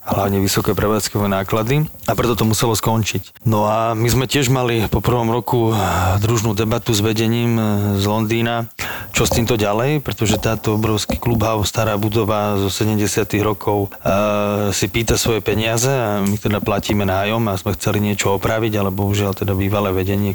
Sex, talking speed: male, 165 wpm